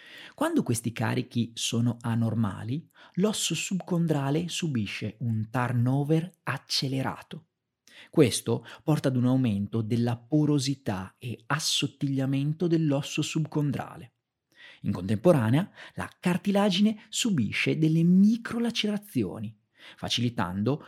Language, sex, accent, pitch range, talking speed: Italian, male, native, 115-160 Hz, 85 wpm